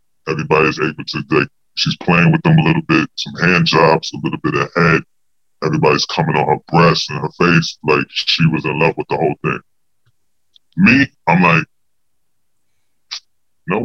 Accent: American